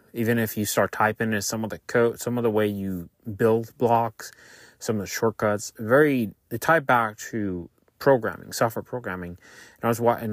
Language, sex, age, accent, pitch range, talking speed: English, male, 30-49, American, 95-120 Hz, 190 wpm